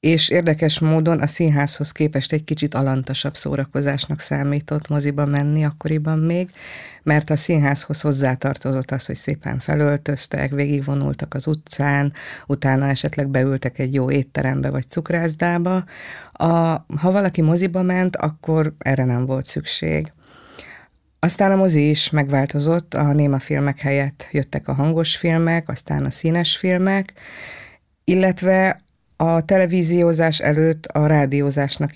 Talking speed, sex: 125 wpm, female